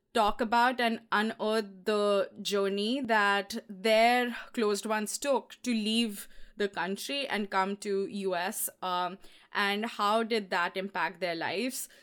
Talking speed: 135 wpm